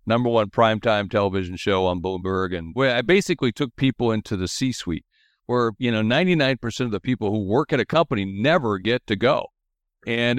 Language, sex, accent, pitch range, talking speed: English, male, American, 110-150 Hz, 185 wpm